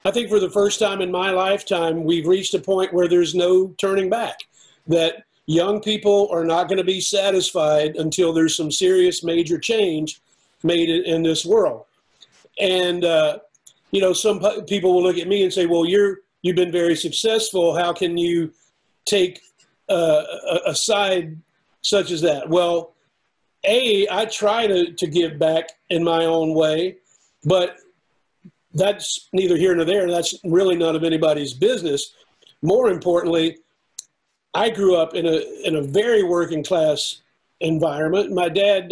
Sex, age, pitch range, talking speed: male, 50-69, 165-195 Hz, 160 wpm